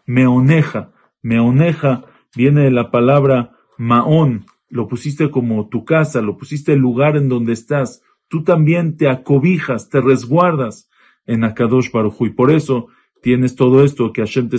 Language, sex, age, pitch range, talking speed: English, male, 40-59, 125-160 Hz, 150 wpm